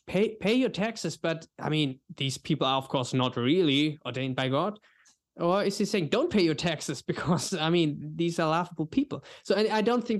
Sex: male